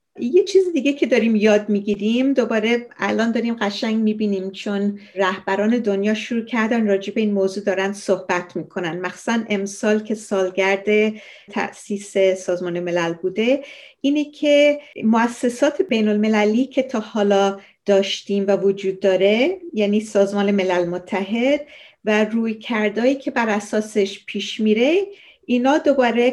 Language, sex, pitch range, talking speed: Persian, female, 200-255 Hz, 130 wpm